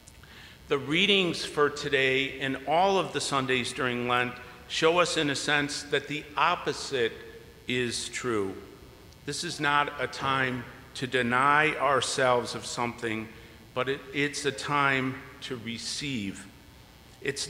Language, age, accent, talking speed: English, 50-69, American, 130 wpm